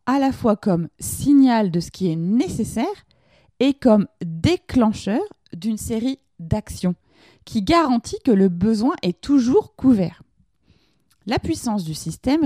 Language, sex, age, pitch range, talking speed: French, female, 20-39, 180-255 Hz, 135 wpm